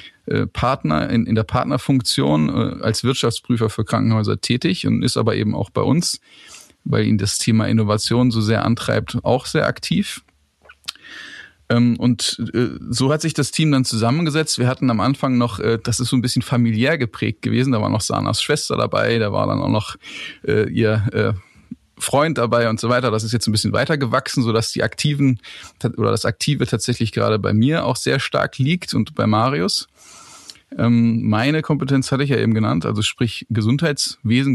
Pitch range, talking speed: 110-130 Hz, 175 wpm